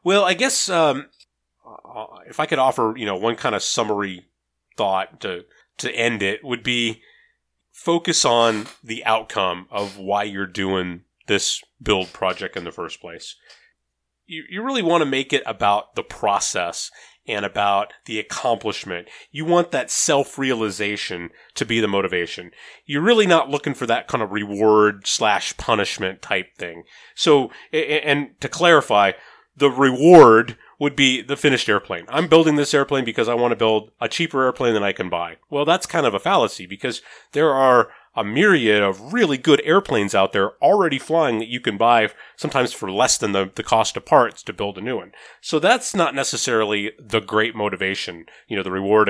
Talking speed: 180 wpm